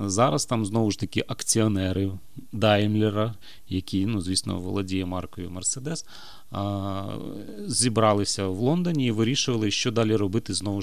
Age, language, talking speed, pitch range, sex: 30-49, Ukrainian, 120 wpm, 100-120 Hz, male